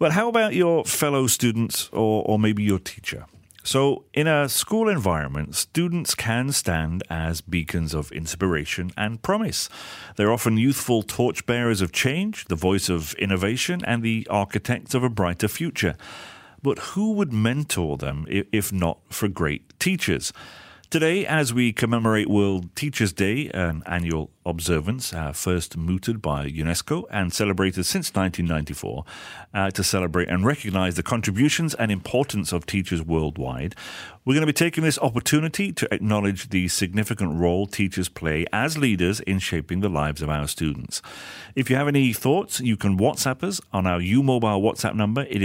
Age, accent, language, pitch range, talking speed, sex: 40-59, British, English, 85-125 Hz, 160 wpm, male